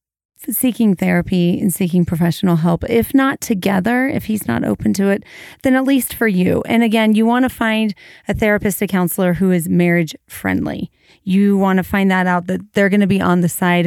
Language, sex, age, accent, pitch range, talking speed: English, female, 30-49, American, 175-215 Hz, 210 wpm